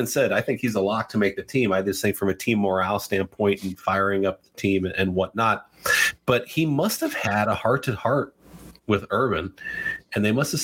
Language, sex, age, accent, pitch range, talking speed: English, male, 30-49, American, 100-125 Hz, 230 wpm